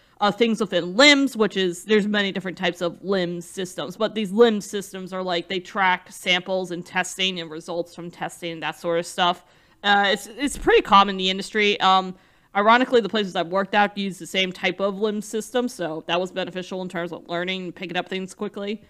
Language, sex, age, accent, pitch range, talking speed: English, female, 20-39, American, 180-215 Hz, 210 wpm